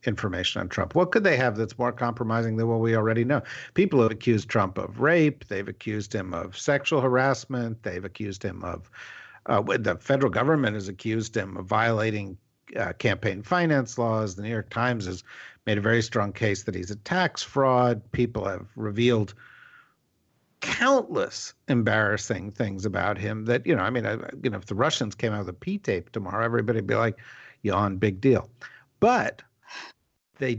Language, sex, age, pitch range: English, male, 50-69, 105-130 Hz